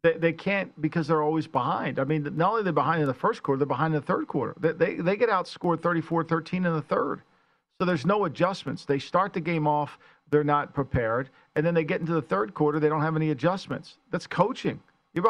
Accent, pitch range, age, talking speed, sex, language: American, 155-190 Hz, 50-69, 235 wpm, male, English